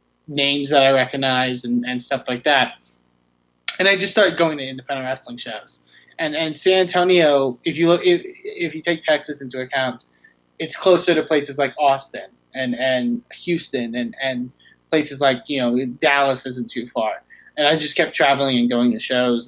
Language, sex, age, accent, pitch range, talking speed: English, male, 20-39, American, 120-145 Hz, 185 wpm